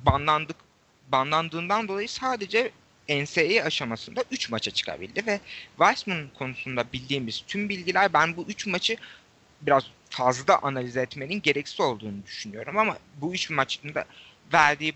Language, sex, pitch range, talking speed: Turkish, male, 120-170 Hz, 120 wpm